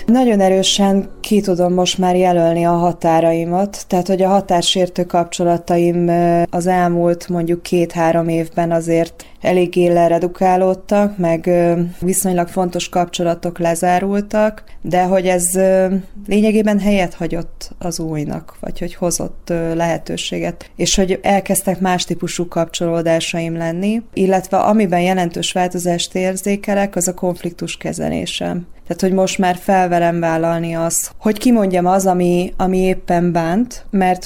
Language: Hungarian